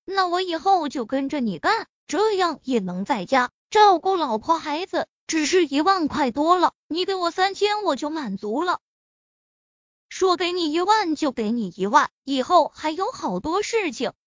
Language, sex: Chinese, female